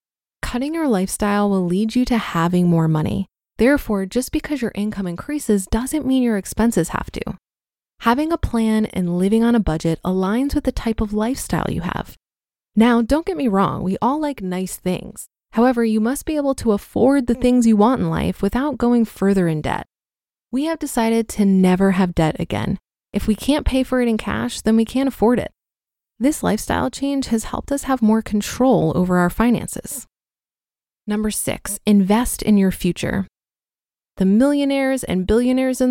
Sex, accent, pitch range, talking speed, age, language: female, American, 185-250 Hz, 185 wpm, 20-39, English